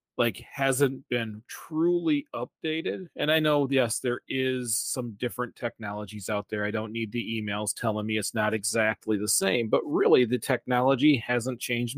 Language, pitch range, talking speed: English, 110-140 Hz, 170 wpm